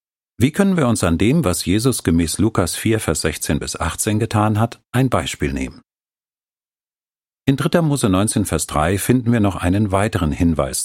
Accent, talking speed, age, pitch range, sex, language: German, 175 wpm, 50-69, 80-120 Hz, male, German